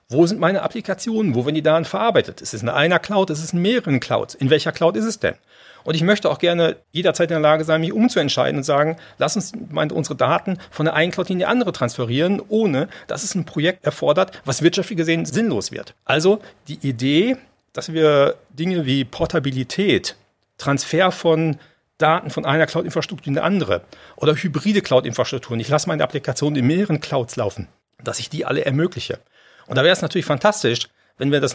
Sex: male